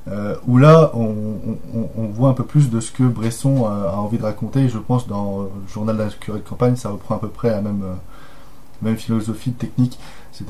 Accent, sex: French, male